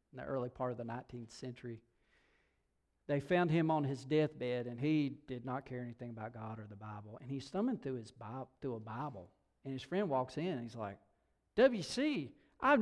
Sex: male